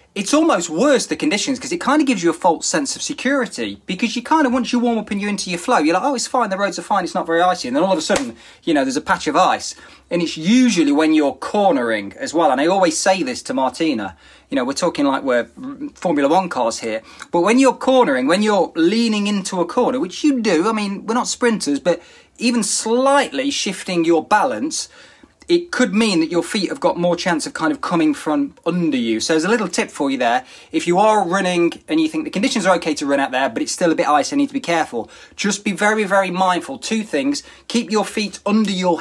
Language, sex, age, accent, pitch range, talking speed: English, male, 20-39, British, 170-260 Hz, 255 wpm